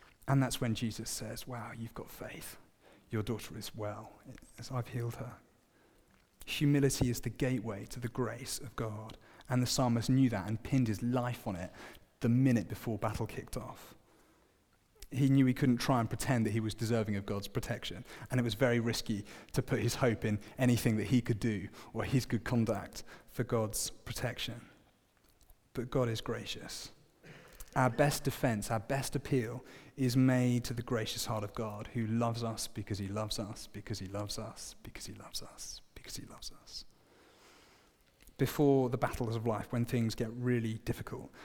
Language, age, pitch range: English, 30-49, 110-125 Hz